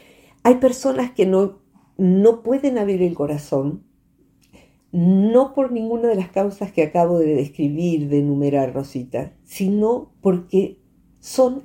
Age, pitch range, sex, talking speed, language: 50-69, 150-210 Hz, female, 130 wpm, Spanish